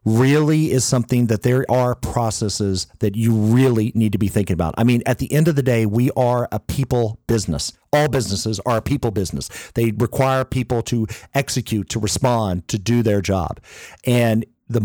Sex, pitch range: male, 115-165 Hz